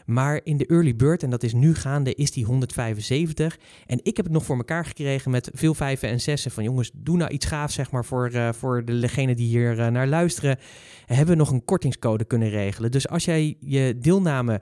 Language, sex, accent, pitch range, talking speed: Dutch, male, Dutch, 120-150 Hz, 230 wpm